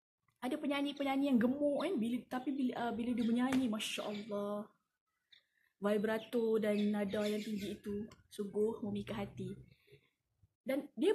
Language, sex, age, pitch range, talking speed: Malay, female, 20-39, 215-290 Hz, 135 wpm